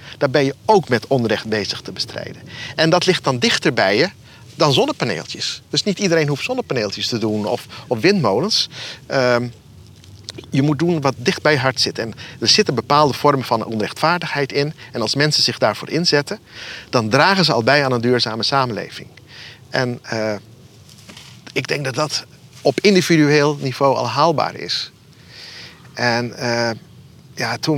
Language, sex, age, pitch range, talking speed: Dutch, male, 50-69, 120-150 Hz, 165 wpm